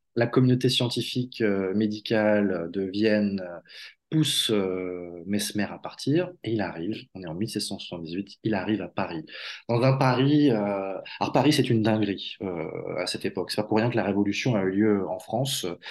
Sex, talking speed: male, 185 wpm